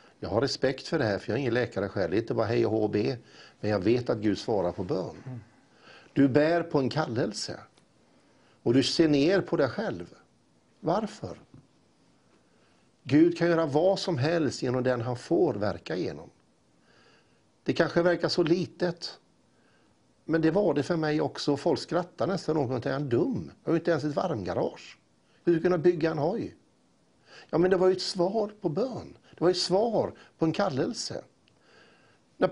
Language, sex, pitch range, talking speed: Swedish, male, 125-175 Hz, 185 wpm